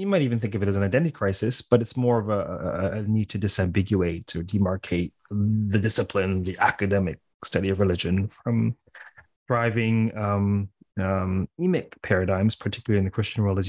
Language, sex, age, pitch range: English, male, 30-49, 100-120 Hz